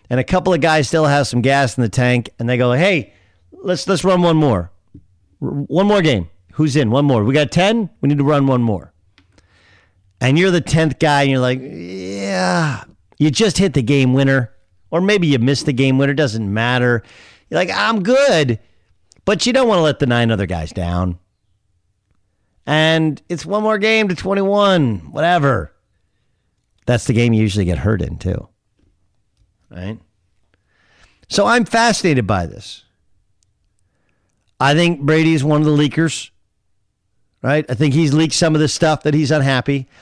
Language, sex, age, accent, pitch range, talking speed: English, male, 40-59, American, 100-155 Hz, 180 wpm